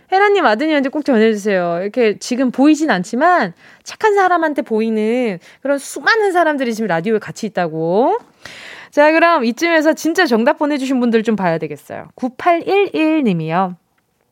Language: Korean